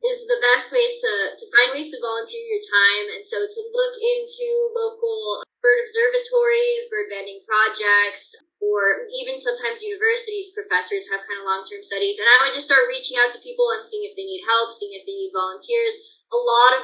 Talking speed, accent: 200 wpm, American